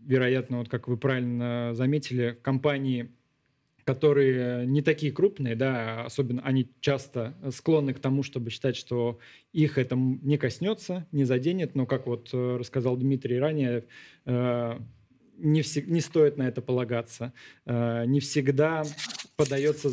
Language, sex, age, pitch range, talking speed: Russian, male, 20-39, 125-145 Hz, 130 wpm